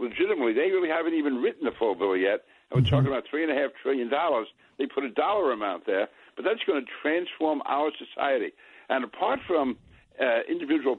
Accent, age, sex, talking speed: American, 60-79, male, 185 wpm